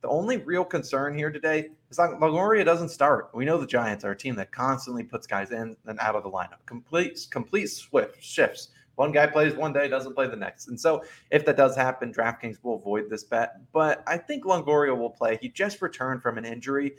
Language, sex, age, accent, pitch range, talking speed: English, male, 20-39, American, 115-150 Hz, 225 wpm